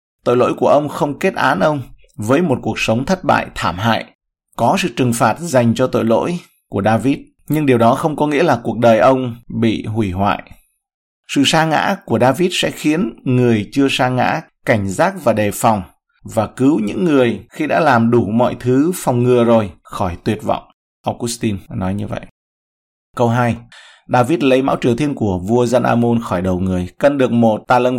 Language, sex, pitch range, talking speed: Vietnamese, male, 115-140 Hz, 200 wpm